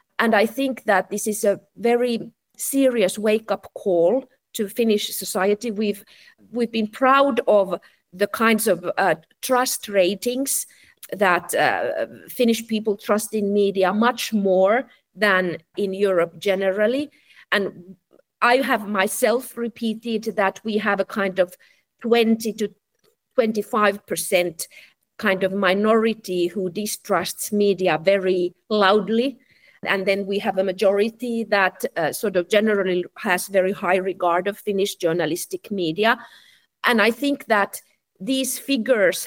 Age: 50-69